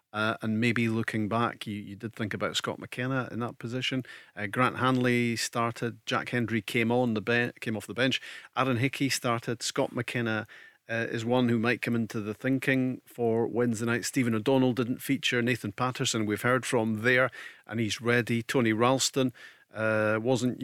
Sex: male